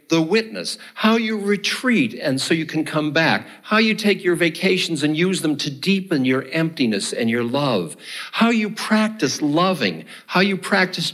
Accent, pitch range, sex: American, 140-190 Hz, male